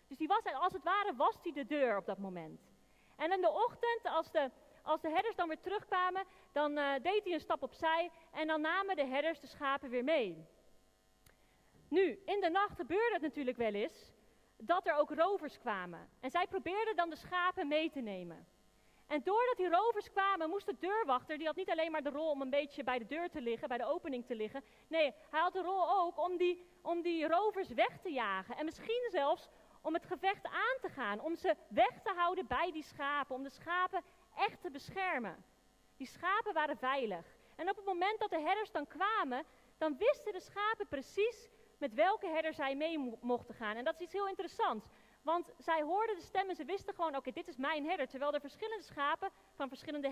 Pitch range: 280-375 Hz